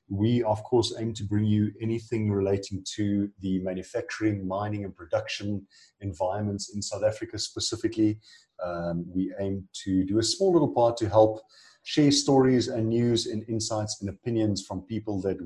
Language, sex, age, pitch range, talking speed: English, male, 30-49, 95-115 Hz, 165 wpm